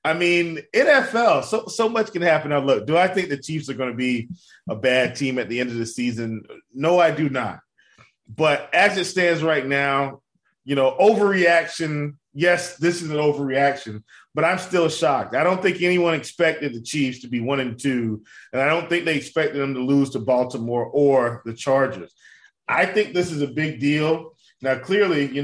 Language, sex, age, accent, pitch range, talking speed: English, male, 30-49, American, 140-185 Hz, 205 wpm